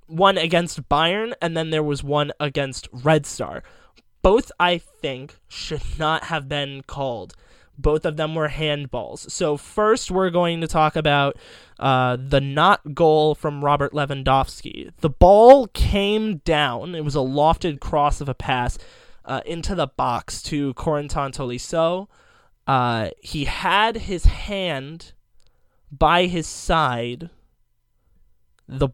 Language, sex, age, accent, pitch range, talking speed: English, male, 20-39, American, 140-175 Hz, 135 wpm